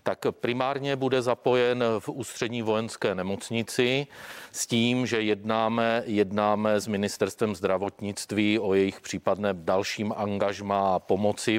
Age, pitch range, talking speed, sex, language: 40-59, 95-110 Hz, 120 wpm, male, Czech